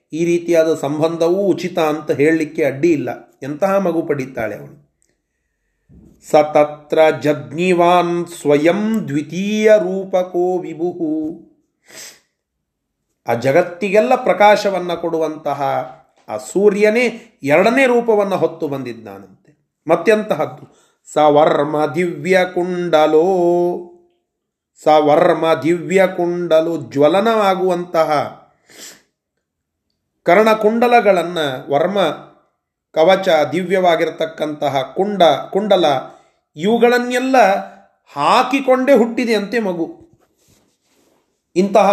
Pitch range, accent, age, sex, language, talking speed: 155-195 Hz, native, 30-49, male, Kannada, 70 wpm